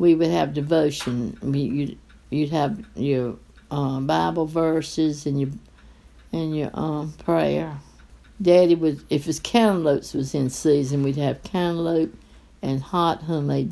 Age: 60-79